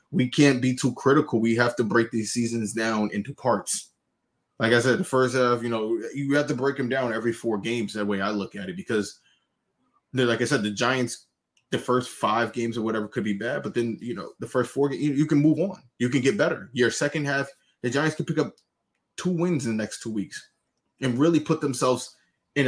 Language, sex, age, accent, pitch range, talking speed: English, male, 20-39, American, 115-140 Hz, 230 wpm